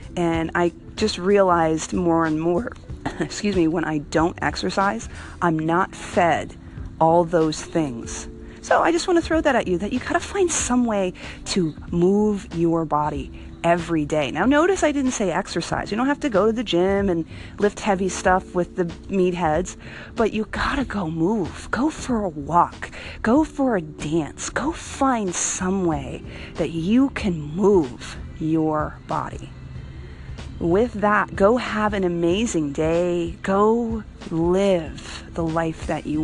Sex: female